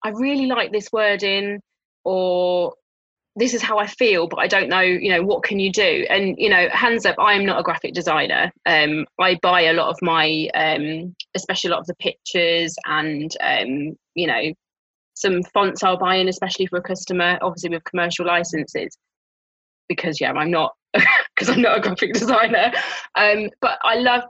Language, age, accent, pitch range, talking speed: English, 20-39, British, 170-240 Hz, 190 wpm